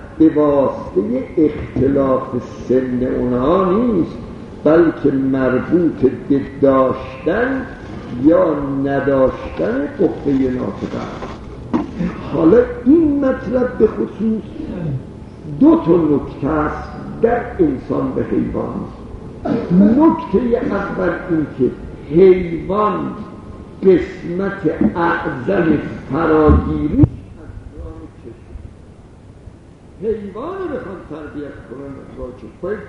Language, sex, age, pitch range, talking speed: Persian, male, 60-79, 135-220 Hz, 70 wpm